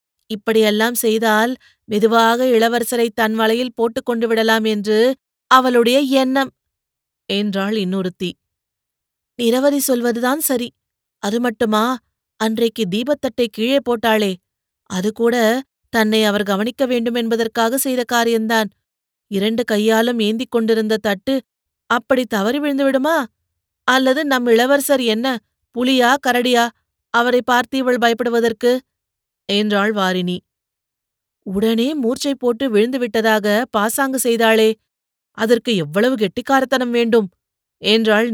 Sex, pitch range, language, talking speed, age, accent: female, 215-245 Hz, Tamil, 95 wpm, 30-49, native